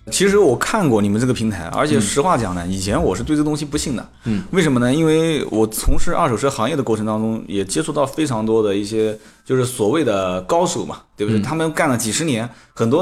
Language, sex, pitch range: Chinese, male, 110-170 Hz